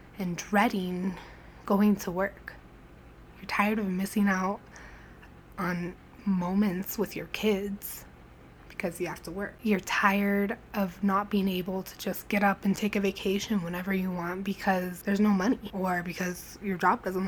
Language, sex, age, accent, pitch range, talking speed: English, female, 10-29, American, 185-220 Hz, 160 wpm